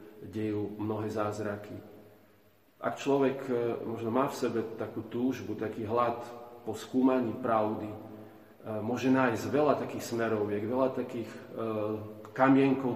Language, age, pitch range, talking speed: Slovak, 40-59, 105-120 Hz, 110 wpm